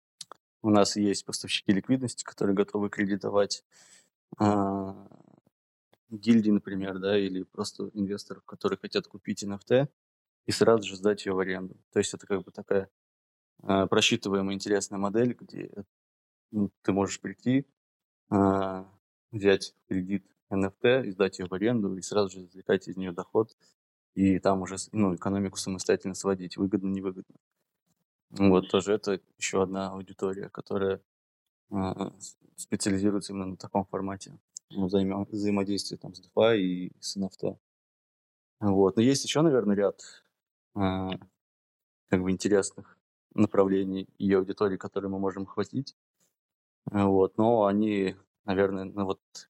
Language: Russian